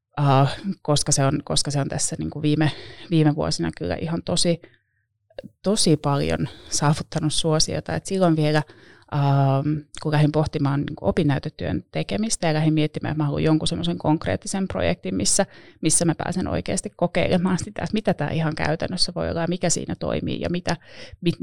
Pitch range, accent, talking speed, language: 145-170 Hz, native, 160 wpm, Finnish